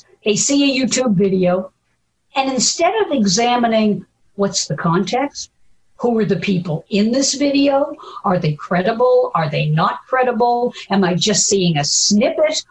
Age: 50-69